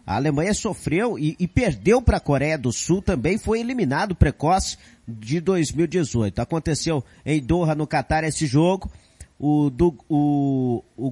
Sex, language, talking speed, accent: male, Portuguese, 150 wpm, Brazilian